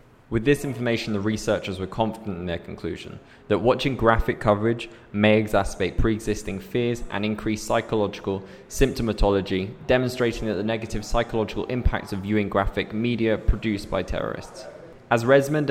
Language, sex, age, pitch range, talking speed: English, male, 20-39, 100-120 Hz, 140 wpm